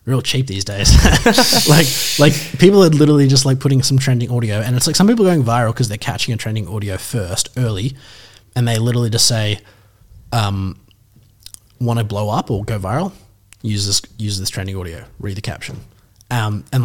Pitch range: 105-135 Hz